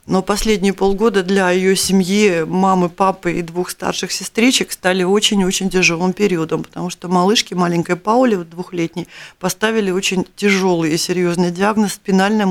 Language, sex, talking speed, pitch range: Russian, female, 150 wpm, 175-195 Hz